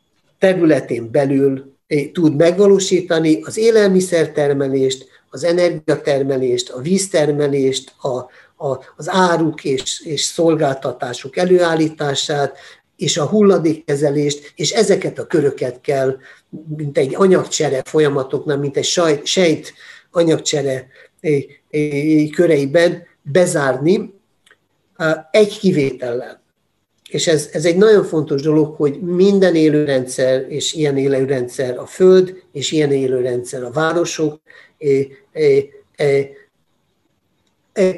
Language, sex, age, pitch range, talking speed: Hungarian, male, 50-69, 140-180 Hz, 90 wpm